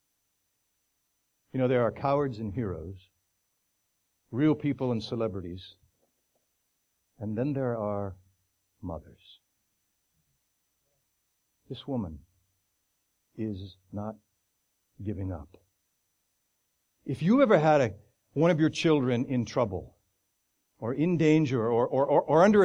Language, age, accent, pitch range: English, 60-79, American, 95-145 Hz